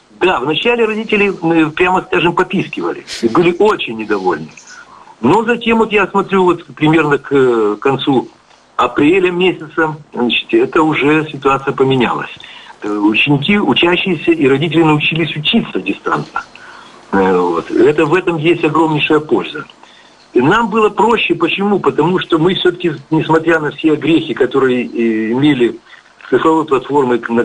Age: 50-69